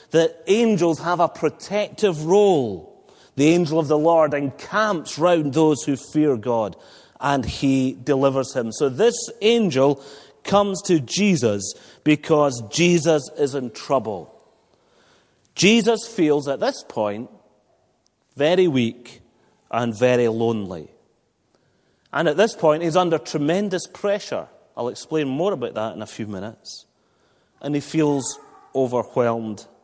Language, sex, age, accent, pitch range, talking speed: English, male, 30-49, British, 120-165 Hz, 125 wpm